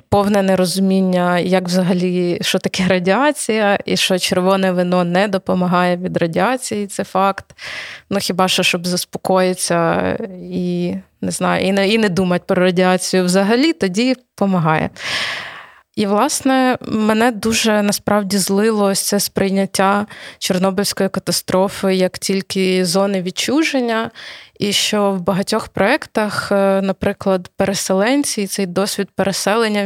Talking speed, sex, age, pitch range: 115 wpm, female, 20-39, 185-210 Hz